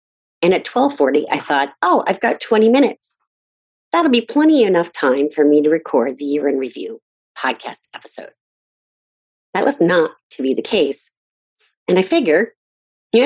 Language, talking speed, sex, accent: English, 165 wpm, female, American